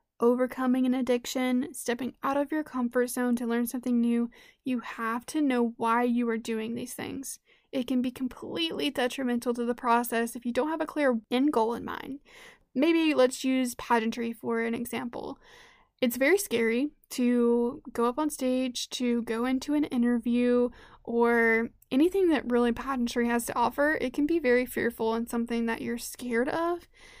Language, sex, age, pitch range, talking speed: English, female, 10-29, 235-265 Hz, 175 wpm